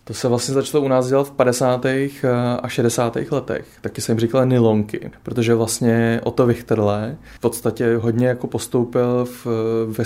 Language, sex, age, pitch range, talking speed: Slovak, male, 20-39, 115-125 Hz, 160 wpm